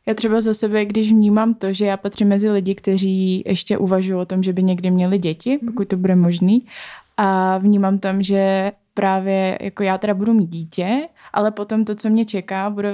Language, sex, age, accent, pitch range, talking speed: Czech, female, 20-39, native, 175-200 Hz, 205 wpm